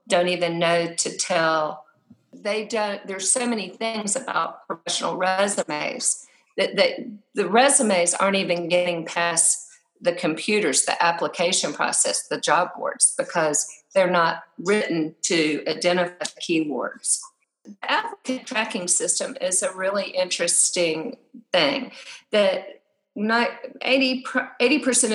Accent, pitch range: American, 175-220 Hz